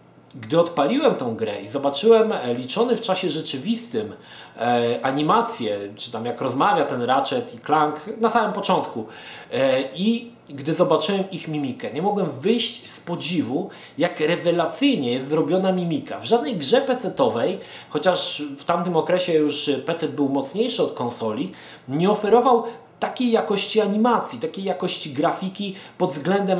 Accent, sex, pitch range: native, male, 140-190 Hz